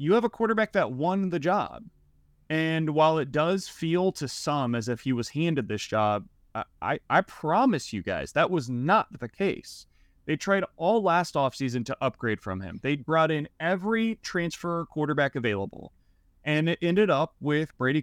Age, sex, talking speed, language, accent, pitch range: 30-49, male, 180 wpm, English, American, 130-175 Hz